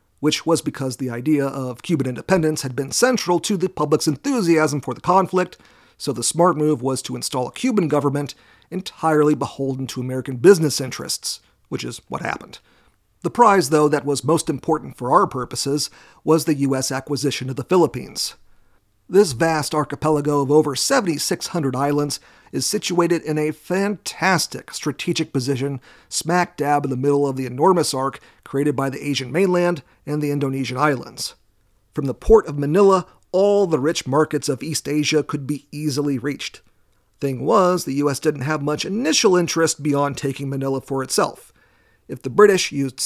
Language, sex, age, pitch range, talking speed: English, male, 40-59, 135-170 Hz, 170 wpm